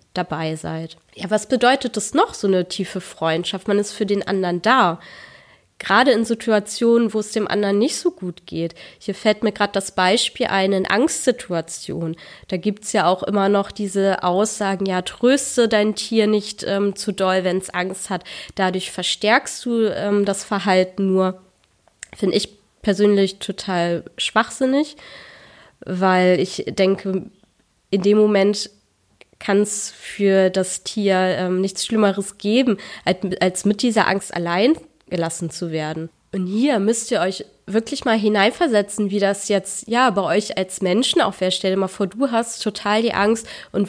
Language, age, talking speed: German, 20-39, 165 wpm